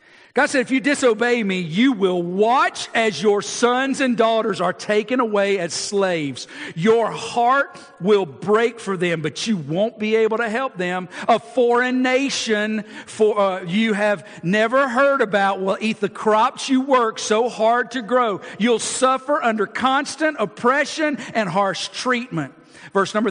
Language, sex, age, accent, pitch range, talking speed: English, male, 50-69, American, 195-240 Hz, 160 wpm